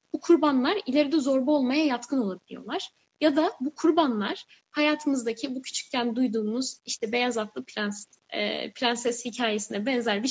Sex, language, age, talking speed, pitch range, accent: female, Turkish, 10-29, 140 wpm, 240-325 Hz, native